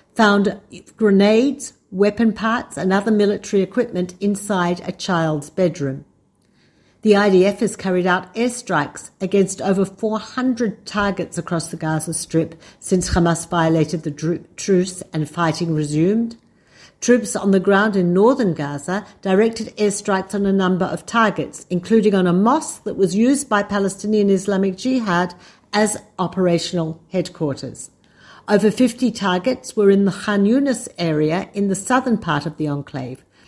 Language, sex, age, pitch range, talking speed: Hebrew, female, 50-69, 170-210 Hz, 140 wpm